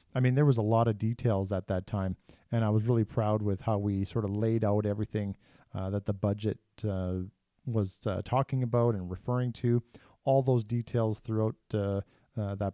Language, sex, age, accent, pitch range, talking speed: English, male, 40-59, American, 105-130 Hz, 205 wpm